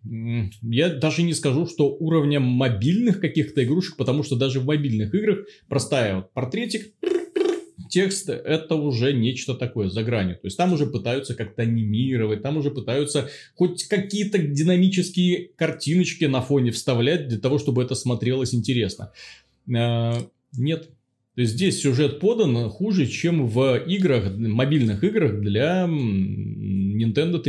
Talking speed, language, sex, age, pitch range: 130 wpm, Russian, male, 30-49, 115-165 Hz